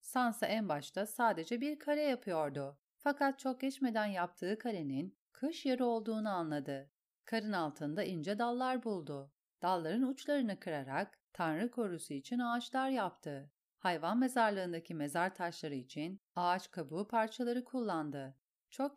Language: Turkish